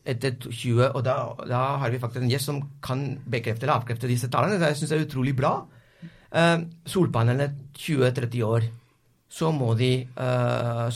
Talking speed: 165 wpm